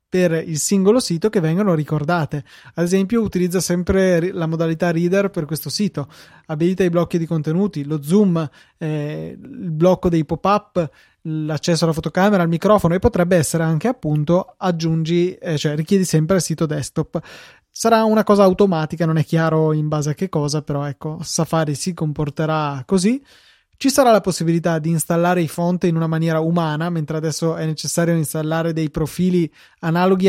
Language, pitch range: Italian, 160-185 Hz